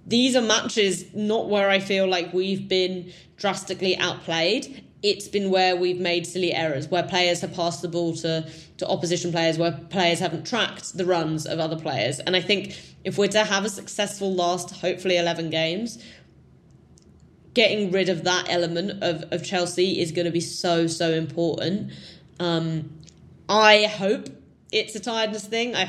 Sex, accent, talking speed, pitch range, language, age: female, British, 170 wpm, 175-200 Hz, English, 10-29